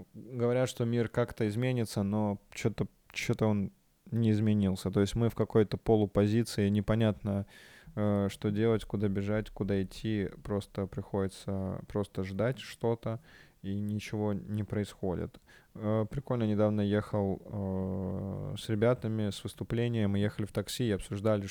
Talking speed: 125 wpm